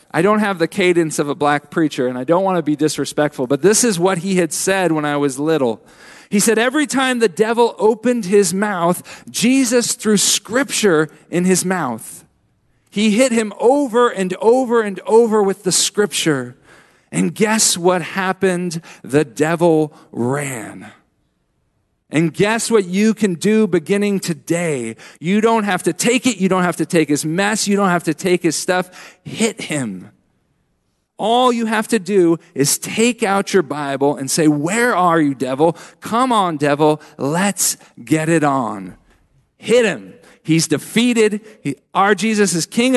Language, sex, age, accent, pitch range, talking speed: English, male, 40-59, American, 155-220 Hz, 170 wpm